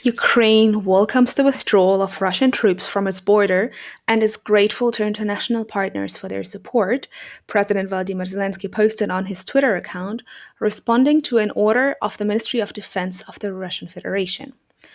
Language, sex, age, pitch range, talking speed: English, female, 20-39, 195-235 Hz, 160 wpm